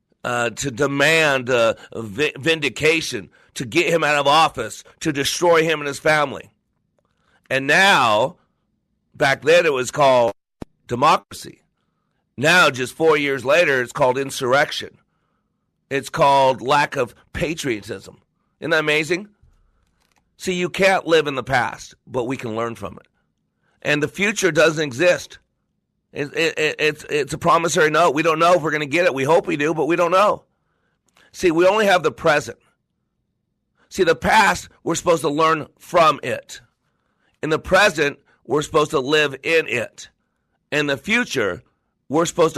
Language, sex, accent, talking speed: English, male, American, 160 wpm